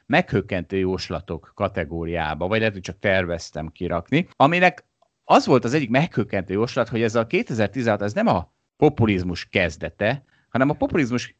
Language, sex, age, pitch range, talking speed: Hungarian, male, 30-49, 95-120 Hz, 145 wpm